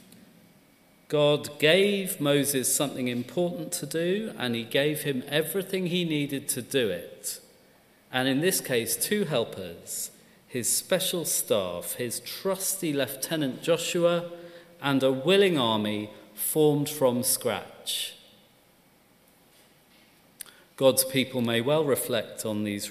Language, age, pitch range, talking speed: English, 40-59, 125-170 Hz, 115 wpm